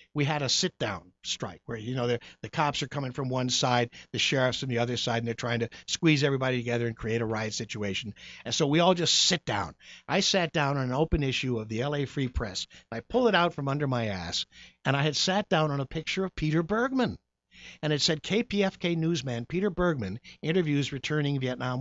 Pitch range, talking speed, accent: 120-190 Hz, 230 wpm, American